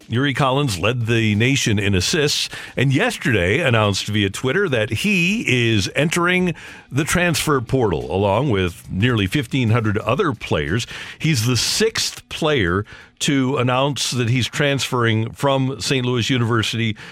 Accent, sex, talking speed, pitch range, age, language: American, male, 135 wpm, 105-140 Hz, 50-69, English